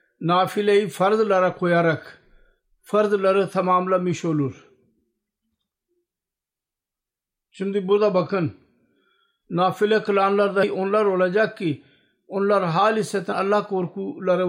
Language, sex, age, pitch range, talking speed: Turkish, male, 50-69, 175-210 Hz, 75 wpm